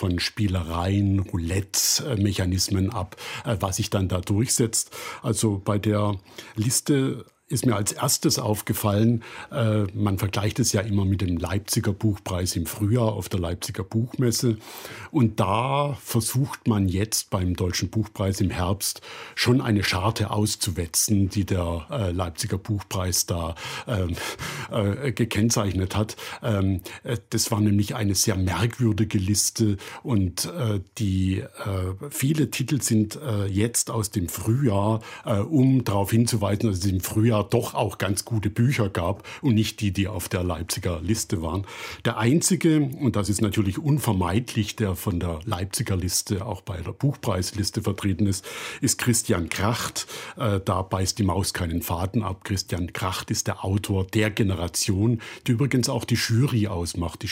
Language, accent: German, German